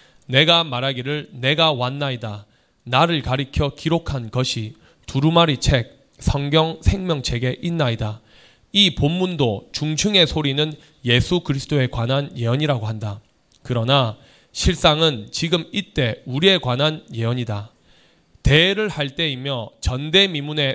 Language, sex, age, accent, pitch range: Korean, male, 20-39, native, 125-160 Hz